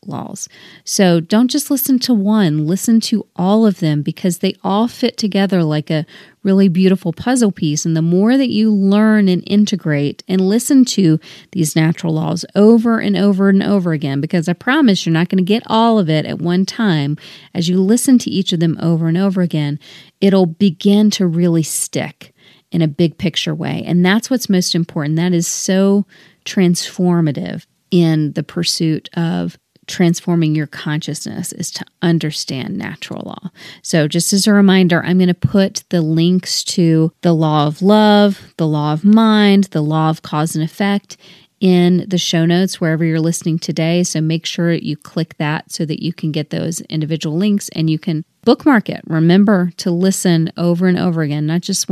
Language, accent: English, American